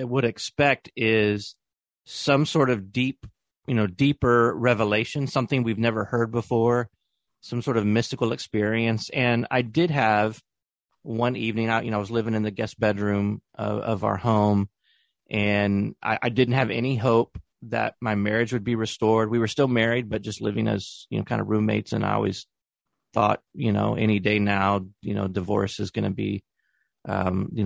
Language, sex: English, male